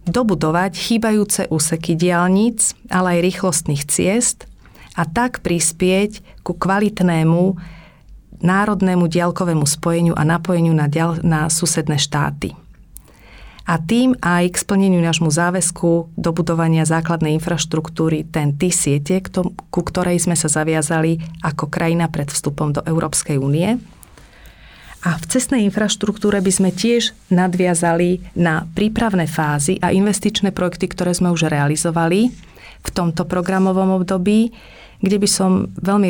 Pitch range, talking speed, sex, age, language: 160-190 Hz, 120 wpm, female, 40-59, Slovak